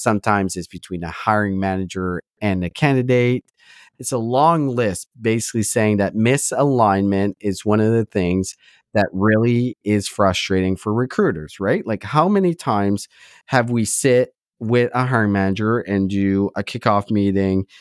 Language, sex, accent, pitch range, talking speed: English, male, American, 100-125 Hz, 150 wpm